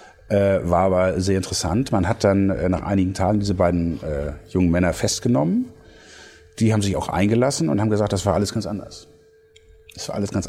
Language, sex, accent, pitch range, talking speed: German, male, German, 95-115 Hz, 200 wpm